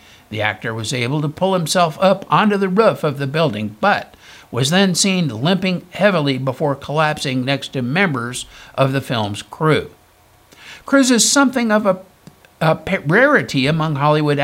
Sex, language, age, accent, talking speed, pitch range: male, English, 60-79, American, 160 wpm, 145-190 Hz